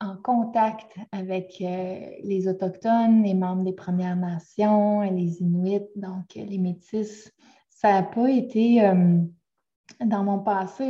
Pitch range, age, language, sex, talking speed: 185-230 Hz, 20-39, French, female, 140 wpm